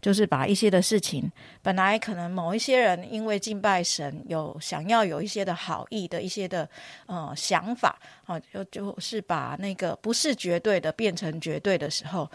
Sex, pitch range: female, 165-200 Hz